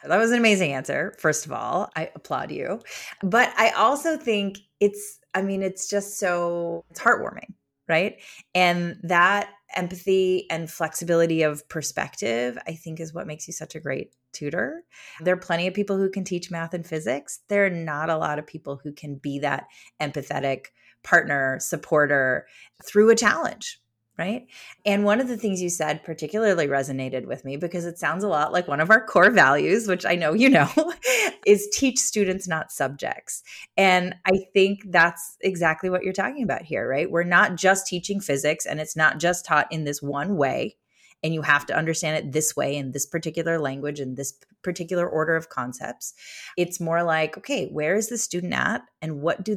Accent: American